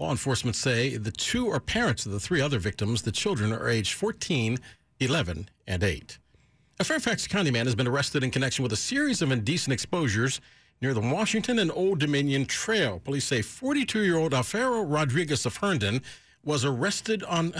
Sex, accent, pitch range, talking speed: male, American, 115-155 Hz, 175 wpm